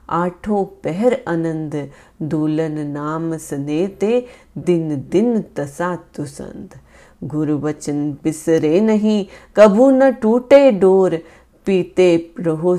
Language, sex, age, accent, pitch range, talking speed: Hindi, female, 30-49, native, 150-200 Hz, 65 wpm